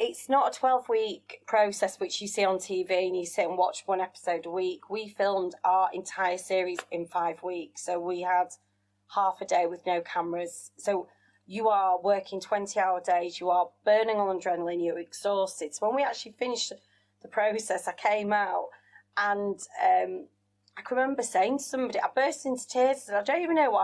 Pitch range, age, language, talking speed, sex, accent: 175-235 Hz, 30-49, English, 200 wpm, female, British